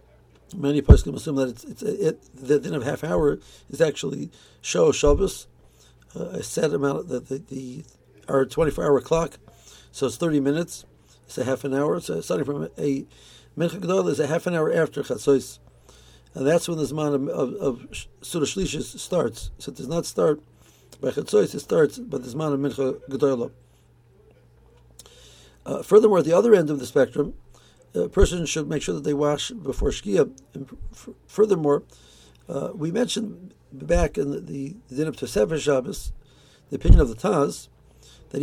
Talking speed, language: 175 wpm, English